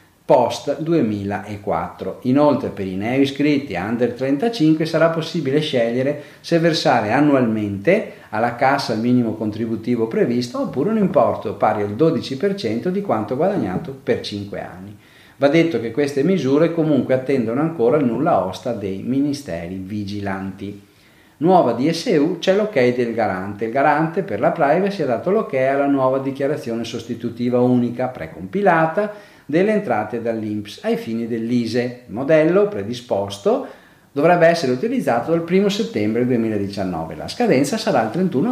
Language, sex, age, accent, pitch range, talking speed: Italian, male, 40-59, native, 105-160 Hz, 135 wpm